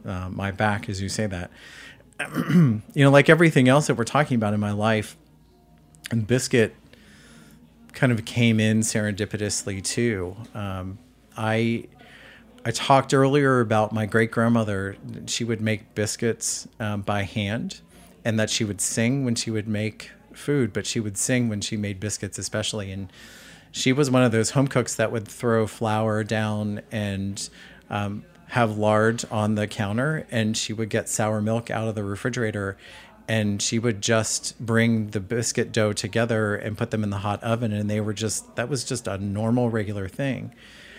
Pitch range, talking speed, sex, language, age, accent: 105-120 Hz, 175 wpm, male, English, 30-49, American